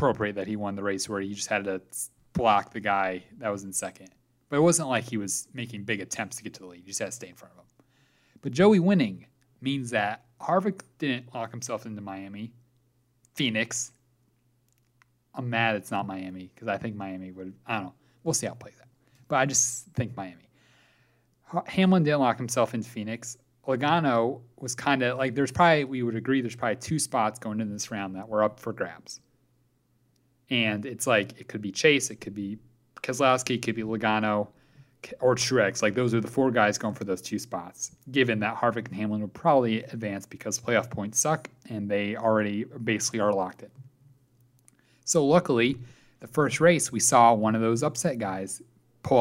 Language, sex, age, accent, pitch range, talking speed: English, male, 30-49, American, 105-130 Hz, 200 wpm